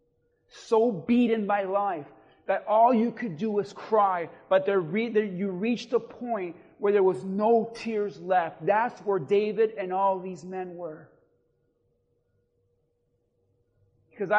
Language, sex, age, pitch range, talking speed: English, male, 40-59, 140-220 Hz, 140 wpm